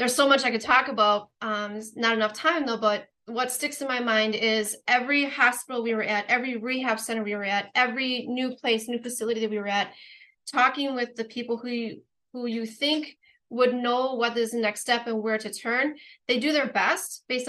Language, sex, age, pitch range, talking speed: English, female, 30-49, 220-255 Hz, 215 wpm